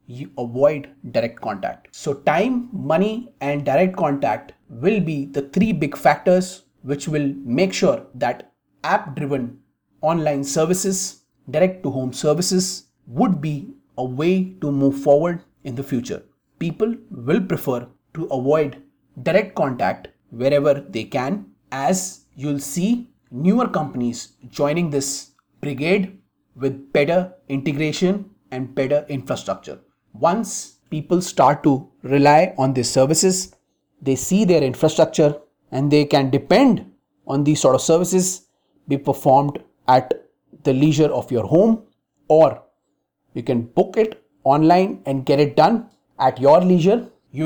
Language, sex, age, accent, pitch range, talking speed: English, male, 30-49, Indian, 140-185 Hz, 135 wpm